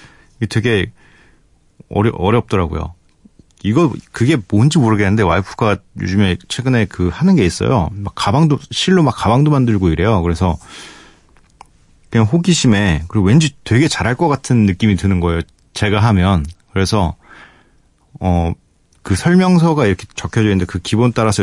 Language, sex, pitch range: Korean, male, 95-135 Hz